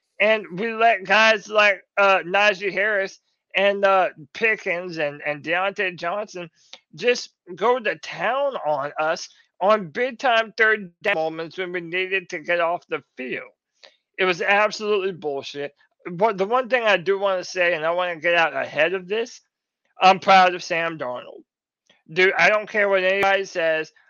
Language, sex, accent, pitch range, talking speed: English, male, American, 180-215 Hz, 170 wpm